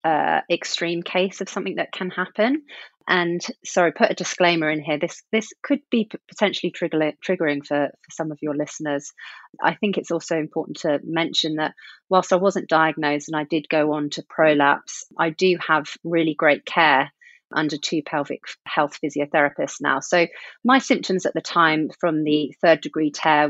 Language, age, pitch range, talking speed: English, 30-49, 150-180 Hz, 180 wpm